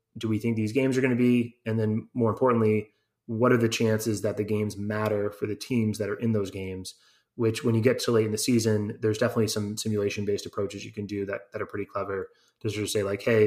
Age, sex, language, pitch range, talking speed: 20-39, male, English, 100-115 Hz, 255 wpm